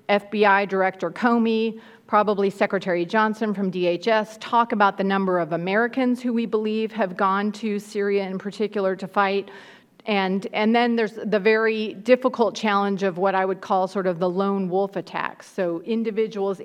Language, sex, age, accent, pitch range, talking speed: English, female, 40-59, American, 185-220 Hz, 165 wpm